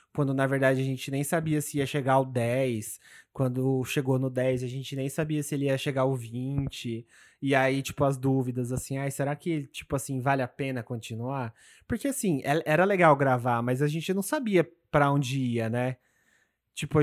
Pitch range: 125-145 Hz